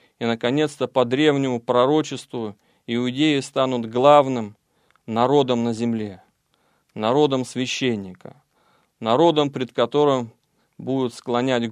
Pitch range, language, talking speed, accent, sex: 120-145 Hz, Russian, 90 wpm, native, male